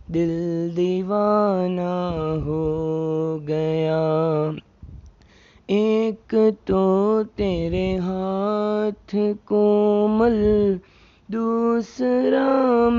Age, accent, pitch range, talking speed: 20-39, native, 160-210 Hz, 45 wpm